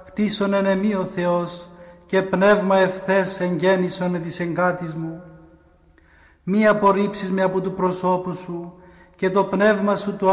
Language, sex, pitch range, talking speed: Greek, male, 175-190 Hz, 130 wpm